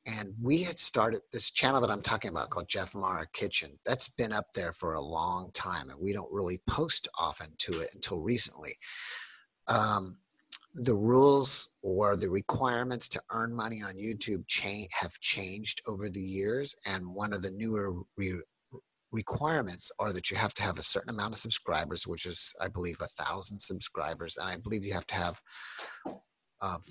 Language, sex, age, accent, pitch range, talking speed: English, male, 50-69, American, 95-115 Hz, 175 wpm